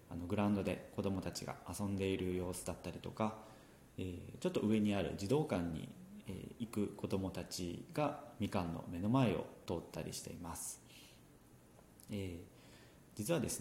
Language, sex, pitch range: Japanese, male, 95-130 Hz